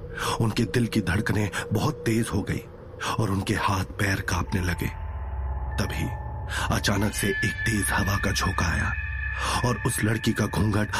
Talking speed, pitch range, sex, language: 155 wpm, 95-110 Hz, male, Hindi